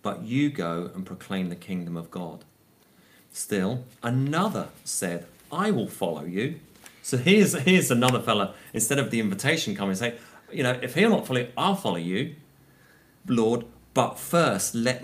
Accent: British